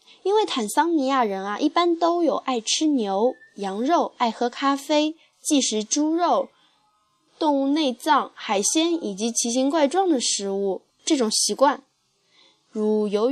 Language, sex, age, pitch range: Chinese, female, 10-29, 215-300 Hz